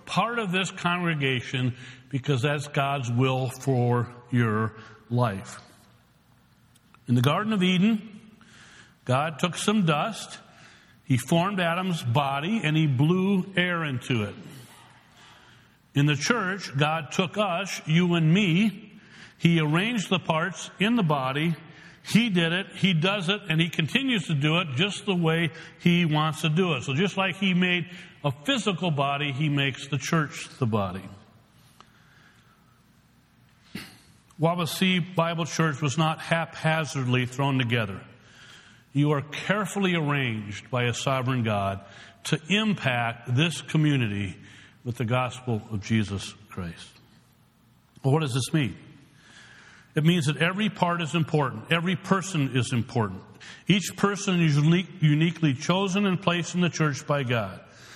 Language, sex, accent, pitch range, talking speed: English, male, American, 130-180 Hz, 140 wpm